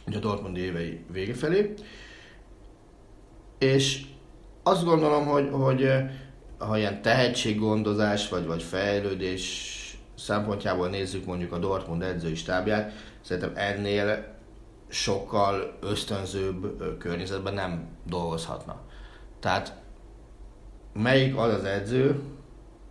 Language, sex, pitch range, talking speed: Hungarian, male, 90-115 Hz, 95 wpm